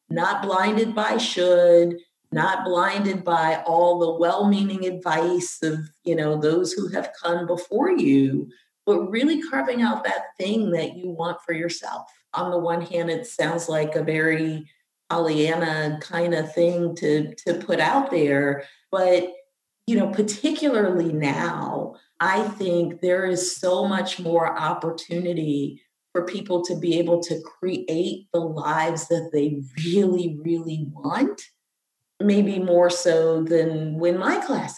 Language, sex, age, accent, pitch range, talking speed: English, female, 40-59, American, 160-190 Hz, 145 wpm